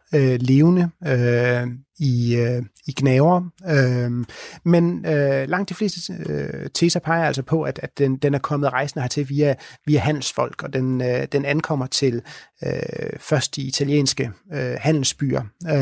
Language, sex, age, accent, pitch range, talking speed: Danish, male, 30-49, native, 130-155 Hz, 115 wpm